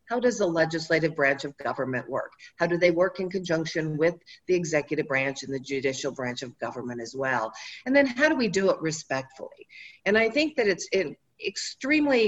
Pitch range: 150-205 Hz